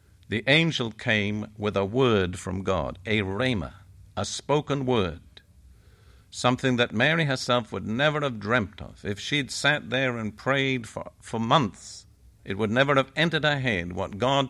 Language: English